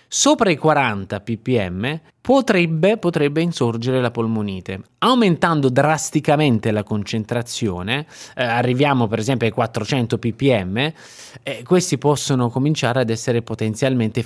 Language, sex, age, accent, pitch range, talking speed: Italian, male, 20-39, native, 110-150 Hz, 115 wpm